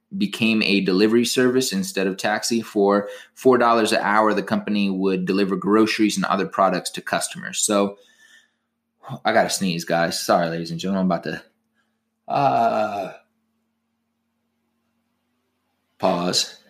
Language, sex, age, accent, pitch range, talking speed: English, male, 20-39, American, 100-135 Hz, 130 wpm